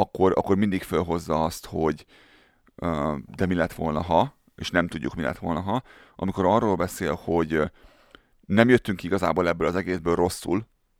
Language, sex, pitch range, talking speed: Hungarian, male, 80-95 Hz, 170 wpm